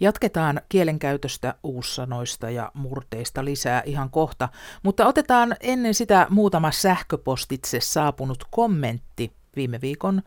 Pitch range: 130-195 Hz